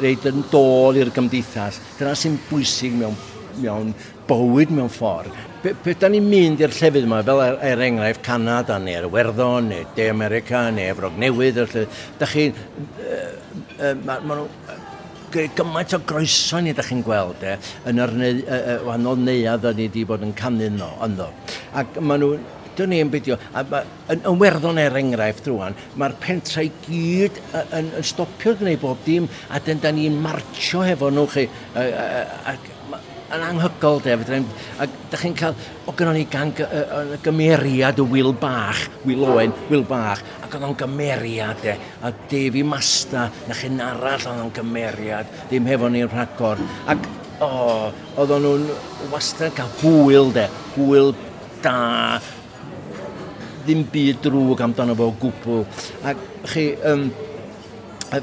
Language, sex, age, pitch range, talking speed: English, male, 60-79, 120-150 Hz, 110 wpm